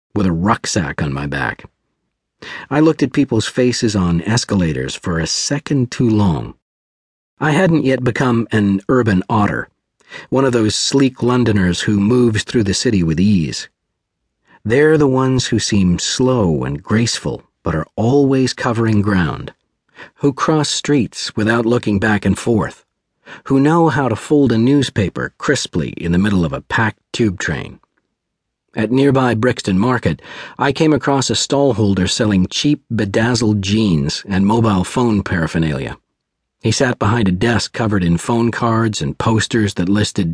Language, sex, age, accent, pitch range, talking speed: English, male, 50-69, American, 100-130 Hz, 155 wpm